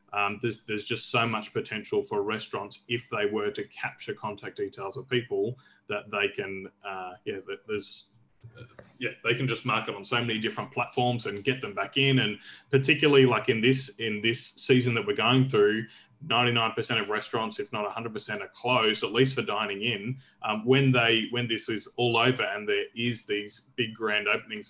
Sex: male